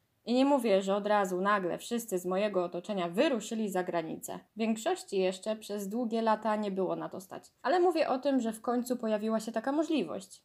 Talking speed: 205 wpm